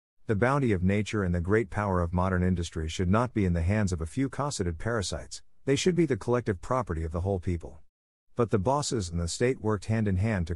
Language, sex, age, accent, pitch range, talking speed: English, male, 50-69, American, 90-120 Hz, 245 wpm